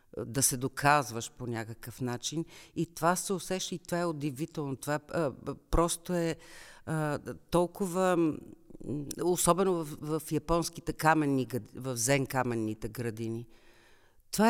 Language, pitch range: Bulgarian, 145-185 Hz